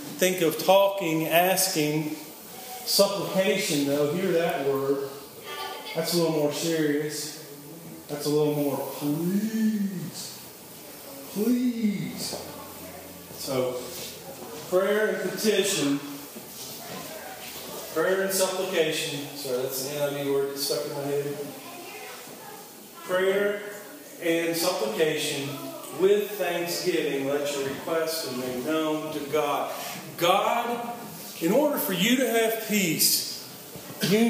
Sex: male